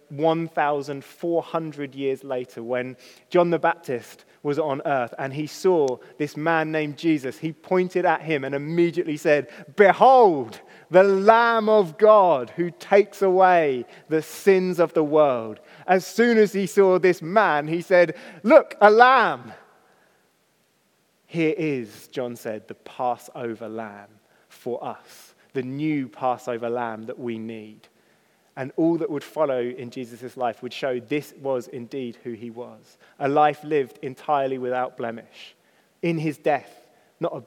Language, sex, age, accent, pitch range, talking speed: English, male, 30-49, British, 125-165 Hz, 145 wpm